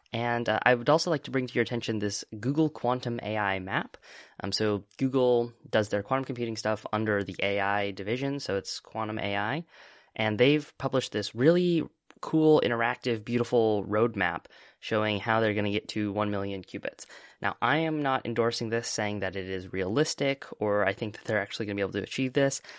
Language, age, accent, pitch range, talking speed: English, 10-29, American, 105-130 Hz, 195 wpm